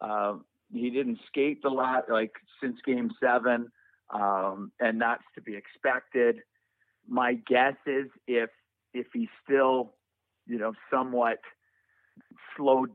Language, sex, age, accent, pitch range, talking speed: English, male, 40-59, American, 105-125 Hz, 125 wpm